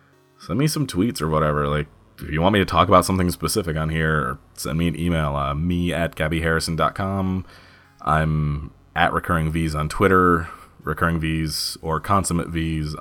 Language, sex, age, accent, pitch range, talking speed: English, male, 20-39, American, 80-95 Hz, 155 wpm